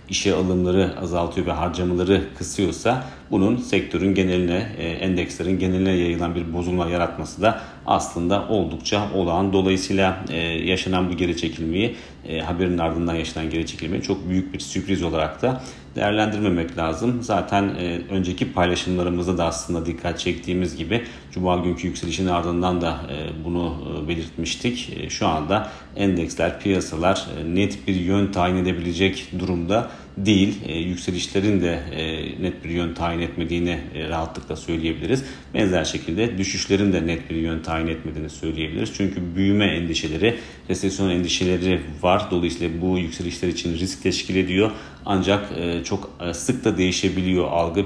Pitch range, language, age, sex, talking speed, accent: 85-95 Hz, Turkish, 40-59, male, 145 wpm, native